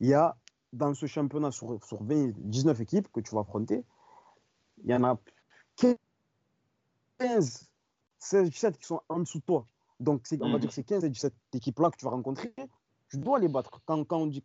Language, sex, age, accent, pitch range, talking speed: French, male, 30-49, French, 120-150 Hz, 210 wpm